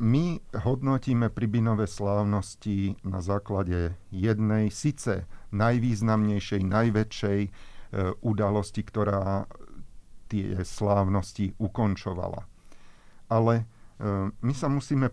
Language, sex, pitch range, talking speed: Slovak, male, 95-115 Hz, 85 wpm